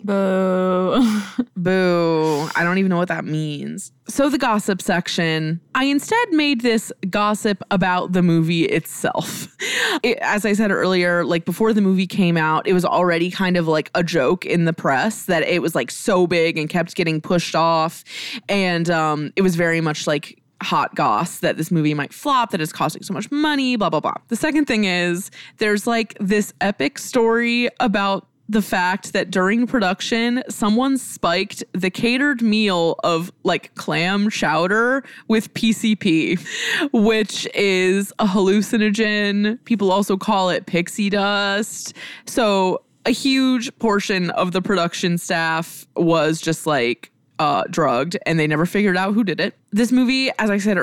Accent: American